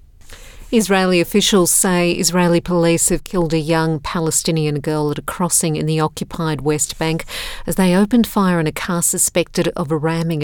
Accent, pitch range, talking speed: Australian, 160-180 Hz, 170 wpm